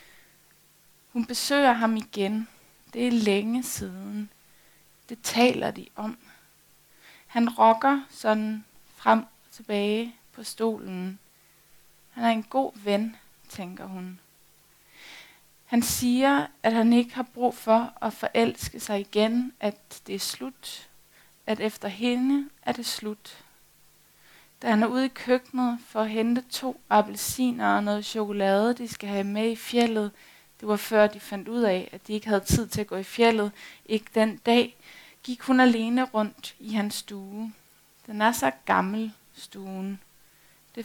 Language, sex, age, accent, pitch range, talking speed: Danish, female, 20-39, native, 200-235 Hz, 150 wpm